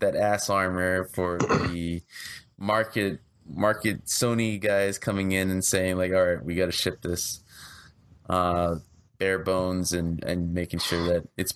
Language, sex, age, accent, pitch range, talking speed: English, male, 20-39, American, 90-105 Hz, 155 wpm